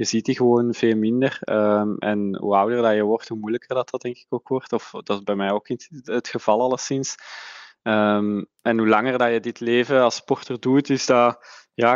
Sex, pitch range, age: male, 115-135 Hz, 20-39